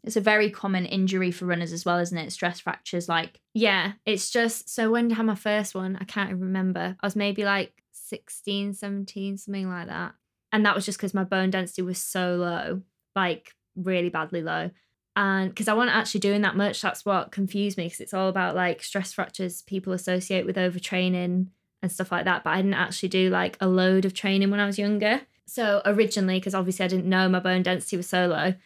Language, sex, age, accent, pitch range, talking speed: English, female, 20-39, British, 180-200 Hz, 225 wpm